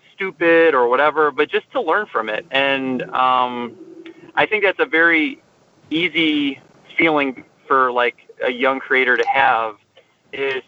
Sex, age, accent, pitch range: male, 30-49, American, 130-160 Hz